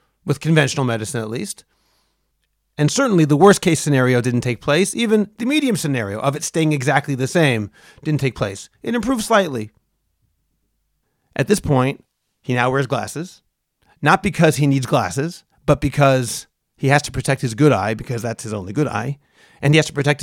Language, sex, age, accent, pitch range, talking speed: English, male, 40-59, American, 120-150 Hz, 185 wpm